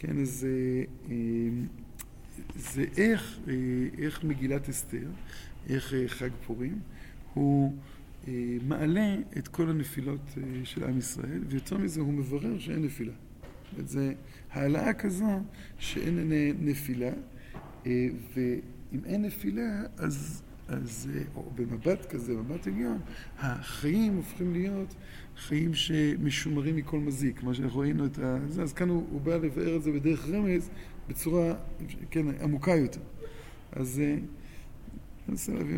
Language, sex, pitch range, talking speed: Hebrew, male, 130-170 Hz, 115 wpm